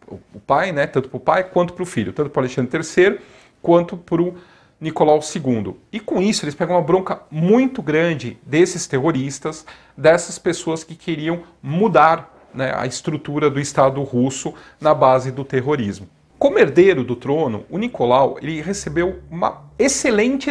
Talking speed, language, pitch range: 165 wpm, Portuguese, 135-185 Hz